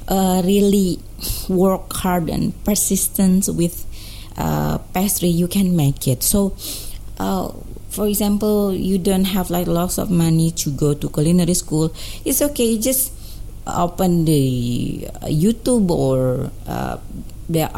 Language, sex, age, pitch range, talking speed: English, female, 30-49, 135-200 Hz, 130 wpm